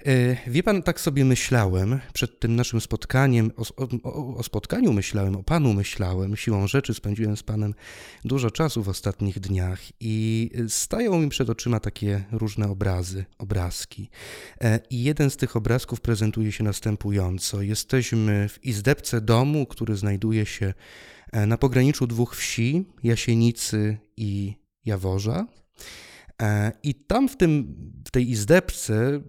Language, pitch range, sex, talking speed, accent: Polish, 105-130 Hz, male, 135 wpm, native